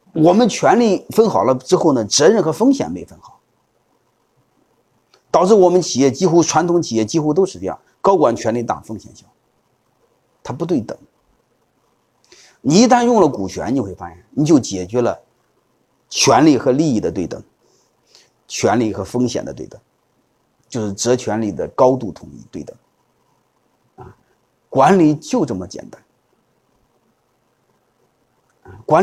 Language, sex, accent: Chinese, male, native